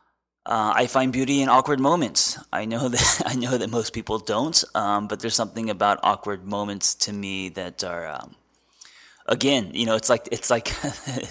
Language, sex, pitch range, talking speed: English, male, 100-120 Hz, 185 wpm